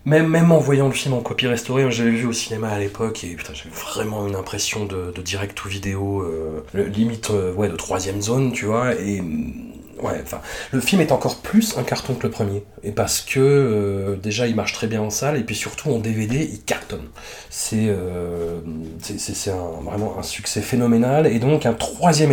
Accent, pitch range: French, 105-135 Hz